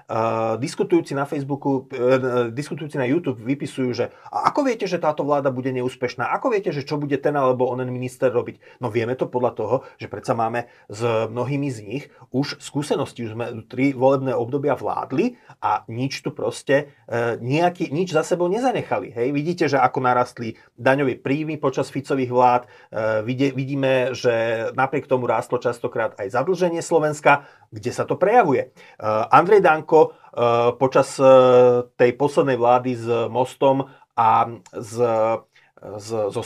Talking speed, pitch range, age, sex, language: 140 wpm, 125-145 Hz, 30-49, male, Slovak